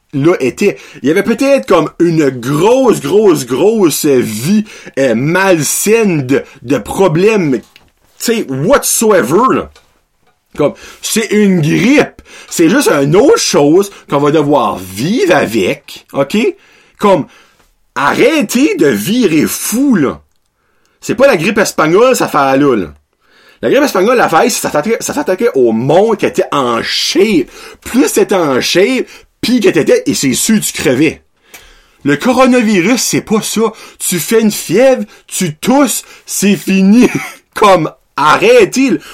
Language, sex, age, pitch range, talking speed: French, male, 30-49, 190-300 Hz, 140 wpm